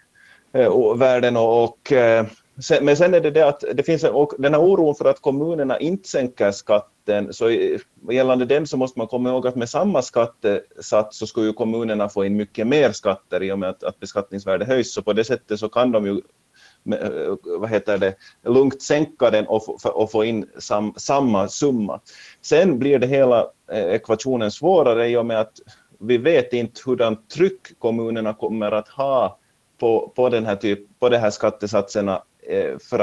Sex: male